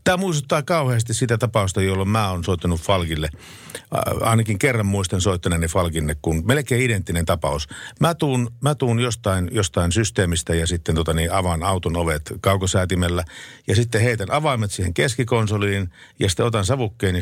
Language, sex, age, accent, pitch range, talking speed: Finnish, male, 50-69, native, 90-120 Hz, 155 wpm